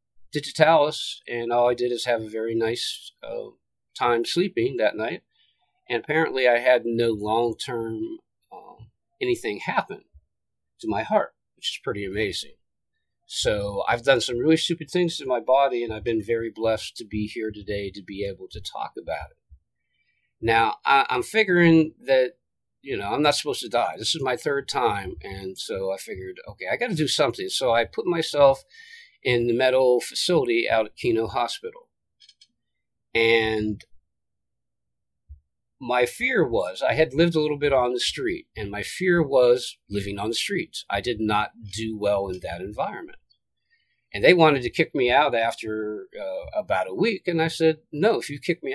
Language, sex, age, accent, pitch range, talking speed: English, male, 40-59, American, 110-170 Hz, 175 wpm